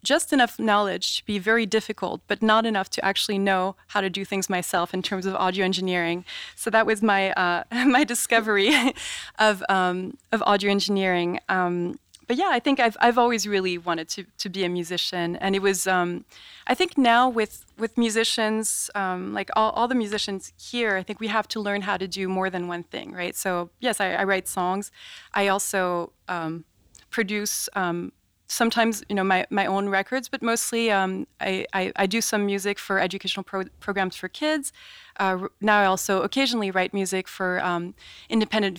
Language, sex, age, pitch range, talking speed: English, female, 20-39, 185-220 Hz, 190 wpm